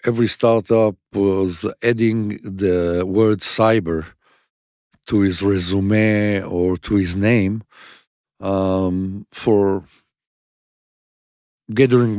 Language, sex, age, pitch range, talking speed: English, male, 50-69, 95-125 Hz, 85 wpm